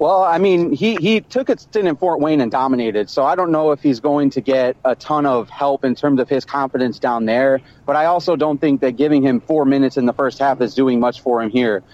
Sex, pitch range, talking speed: male, 130-150 Hz, 265 wpm